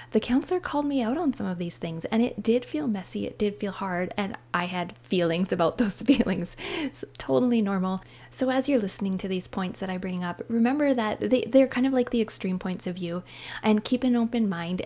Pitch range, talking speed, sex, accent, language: 180-230 Hz, 225 wpm, female, American, English